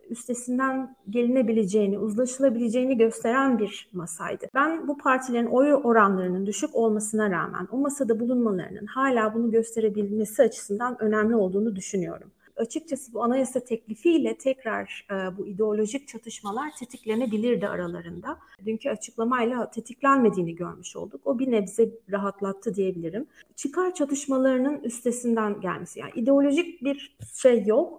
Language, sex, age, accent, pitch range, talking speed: Turkish, female, 30-49, native, 210-260 Hz, 115 wpm